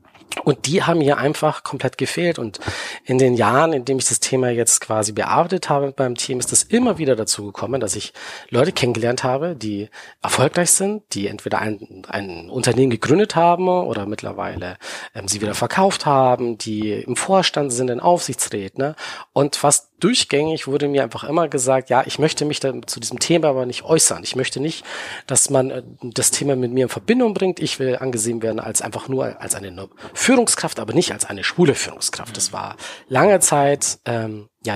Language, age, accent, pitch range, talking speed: German, 40-59, German, 115-150 Hz, 190 wpm